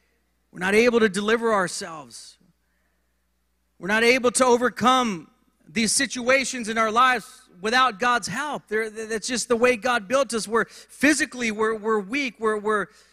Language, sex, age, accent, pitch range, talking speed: English, male, 40-59, American, 200-245 Hz, 155 wpm